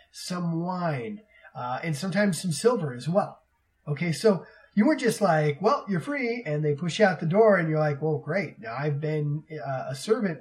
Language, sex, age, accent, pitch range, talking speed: English, male, 30-49, American, 150-200 Hz, 210 wpm